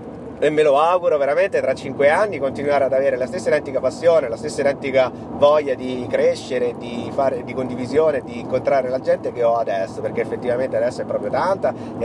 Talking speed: 195 wpm